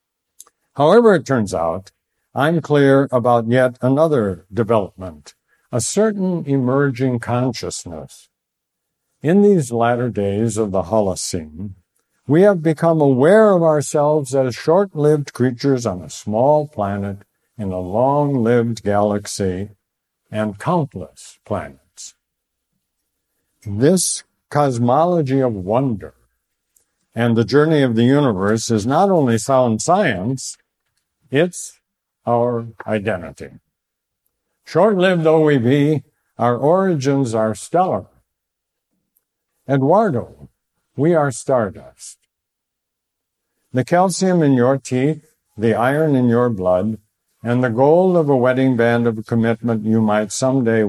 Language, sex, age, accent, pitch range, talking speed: English, male, 60-79, American, 110-145 Hz, 110 wpm